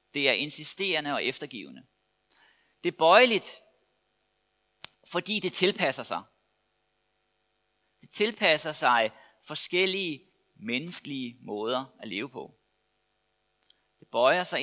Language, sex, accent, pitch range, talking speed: Danish, male, native, 110-180 Hz, 100 wpm